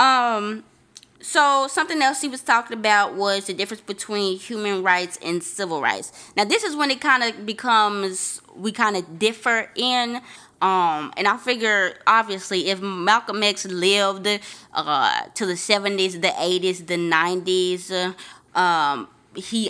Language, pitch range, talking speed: English, 175-225 Hz, 150 wpm